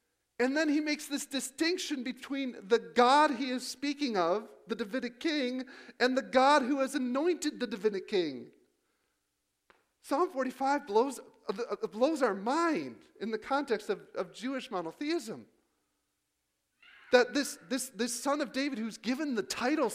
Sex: male